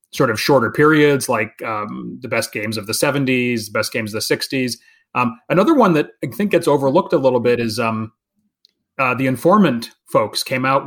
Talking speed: 205 wpm